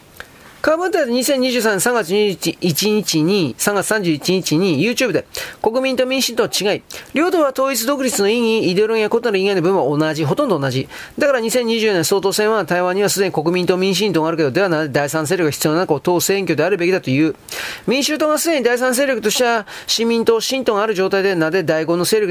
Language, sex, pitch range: Japanese, male, 175-225 Hz